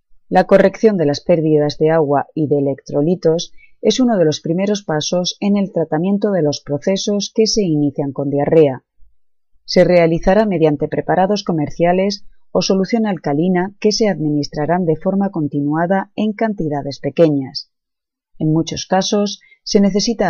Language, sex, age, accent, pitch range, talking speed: Spanish, female, 30-49, Spanish, 150-200 Hz, 145 wpm